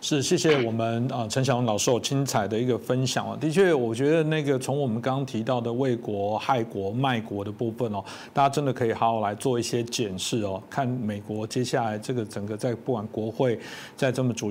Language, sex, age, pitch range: Chinese, male, 50-69, 115-140 Hz